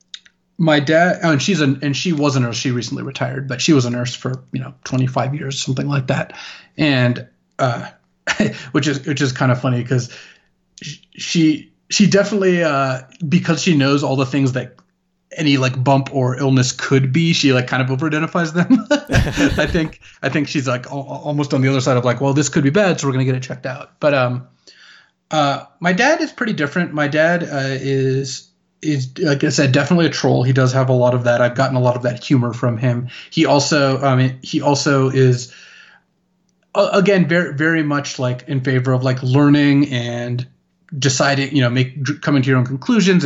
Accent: American